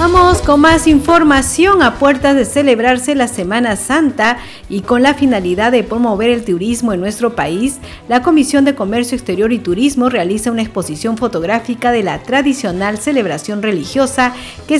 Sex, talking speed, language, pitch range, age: female, 160 wpm, Spanish, 220-280 Hz, 50-69